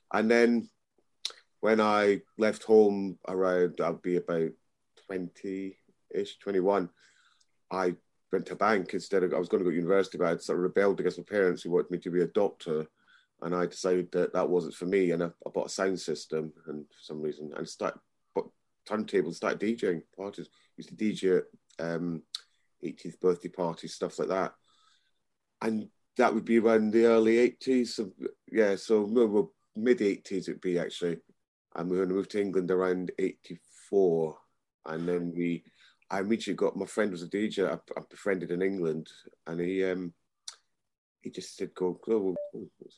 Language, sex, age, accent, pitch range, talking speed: English, male, 30-49, British, 85-105 Hz, 185 wpm